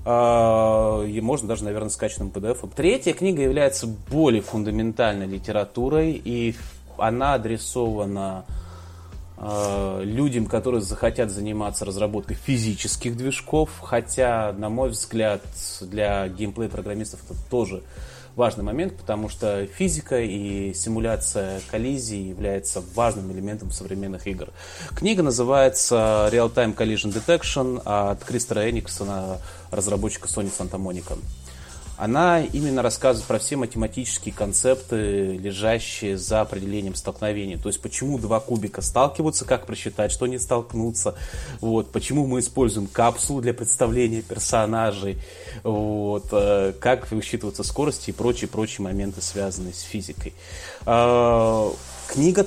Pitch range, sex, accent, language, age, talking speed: 100-120 Hz, male, native, Russian, 20-39, 115 wpm